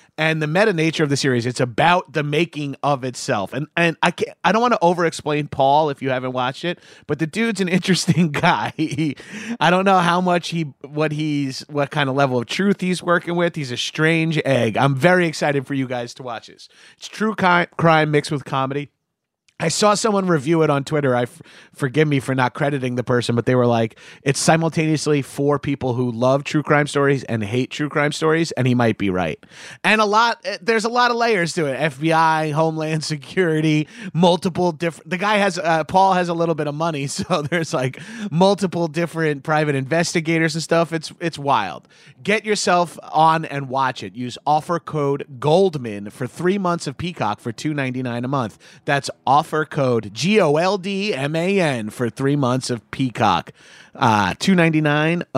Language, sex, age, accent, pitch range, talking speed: English, male, 30-49, American, 135-175 Hz, 190 wpm